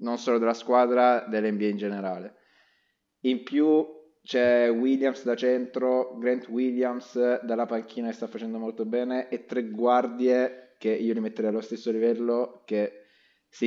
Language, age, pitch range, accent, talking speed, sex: Italian, 20-39, 105-130 Hz, native, 150 wpm, male